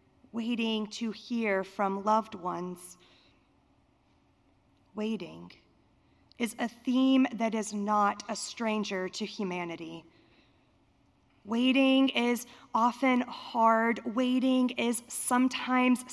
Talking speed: 90 wpm